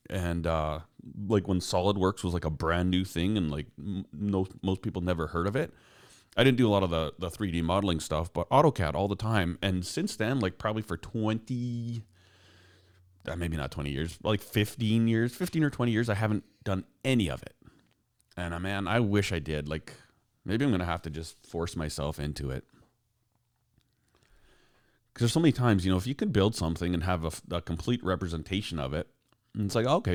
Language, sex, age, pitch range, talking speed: English, male, 30-49, 90-115 Hz, 205 wpm